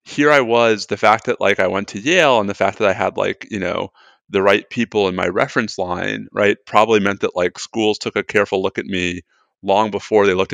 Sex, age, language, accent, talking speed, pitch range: male, 30-49, English, American, 245 wpm, 95-115 Hz